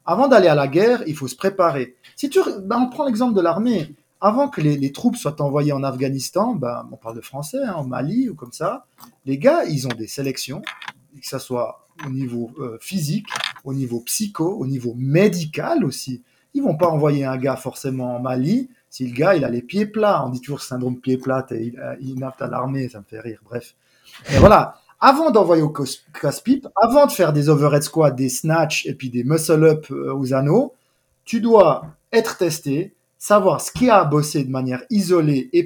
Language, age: French, 30-49